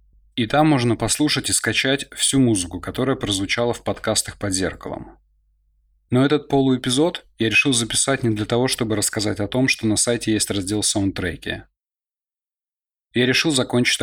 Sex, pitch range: male, 90-125 Hz